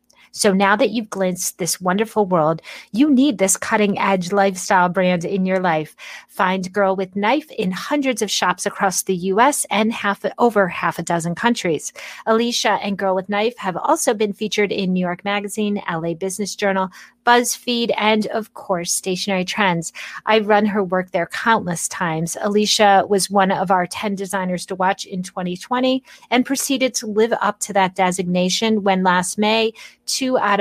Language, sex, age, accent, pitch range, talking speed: English, female, 30-49, American, 185-220 Hz, 175 wpm